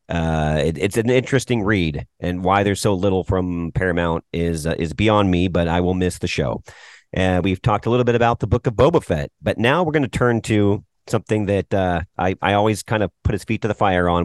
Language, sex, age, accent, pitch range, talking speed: English, male, 40-59, American, 90-115 Hz, 250 wpm